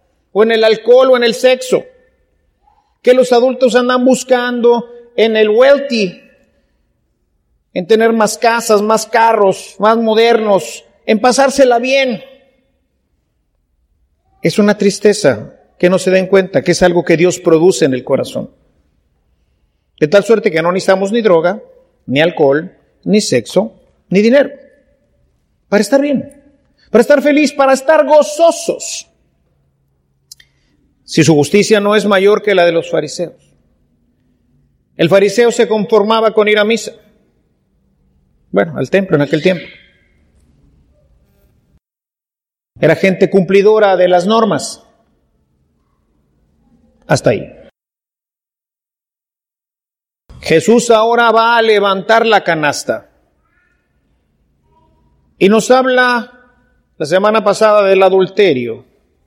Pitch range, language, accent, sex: 165-245 Hz, English, Mexican, male